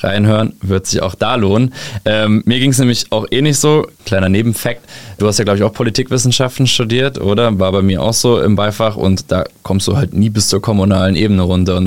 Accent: German